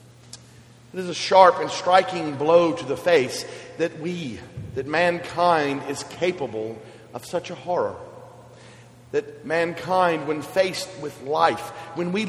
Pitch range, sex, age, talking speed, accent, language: 125-170 Hz, male, 40-59, 135 wpm, American, English